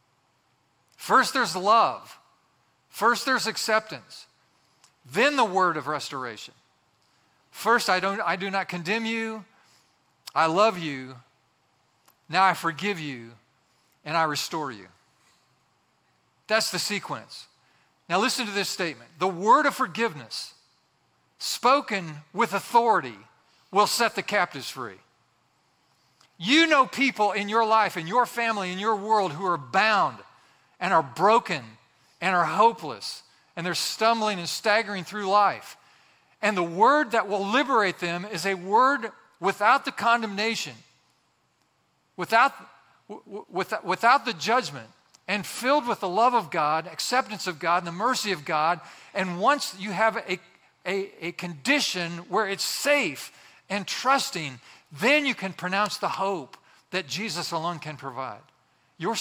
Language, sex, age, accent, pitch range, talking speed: English, male, 40-59, American, 165-225 Hz, 135 wpm